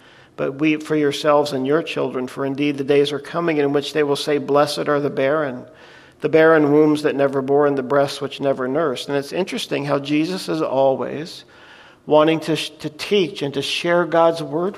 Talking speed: 205 wpm